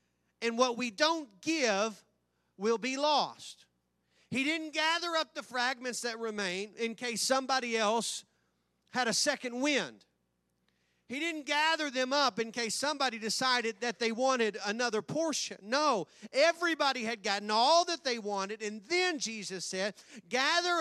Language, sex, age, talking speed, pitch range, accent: English, male, 40-59, 145 wpm, 165-250 Hz, American